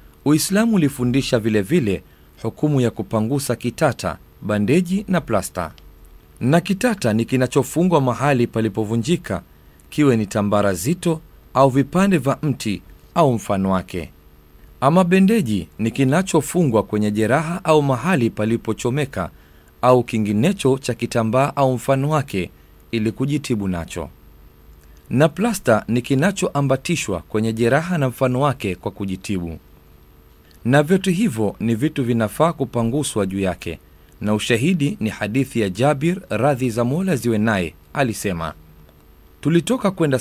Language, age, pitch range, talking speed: Swahili, 40-59, 90-140 Hz, 120 wpm